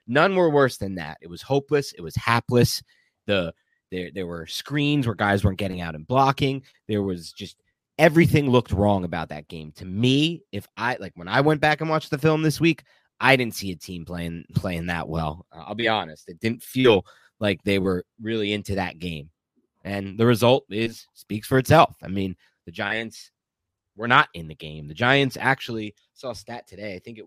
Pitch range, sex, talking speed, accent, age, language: 95-135 Hz, male, 210 wpm, American, 30-49, English